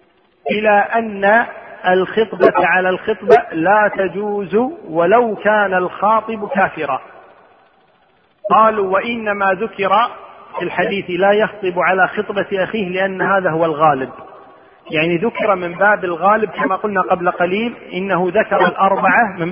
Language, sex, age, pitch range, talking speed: Arabic, male, 40-59, 180-220 Hz, 115 wpm